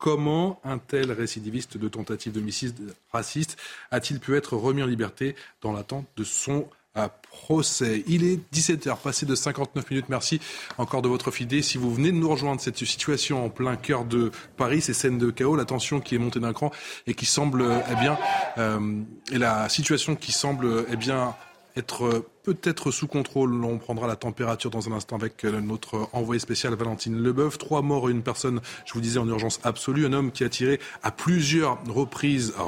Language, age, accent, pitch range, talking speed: French, 20-39, French, 115-140 Hz, 195 wpm